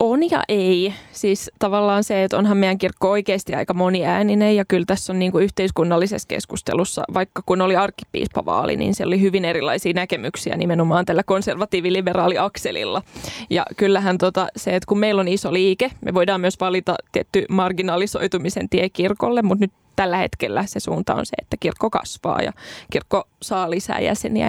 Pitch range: 180-205 Hz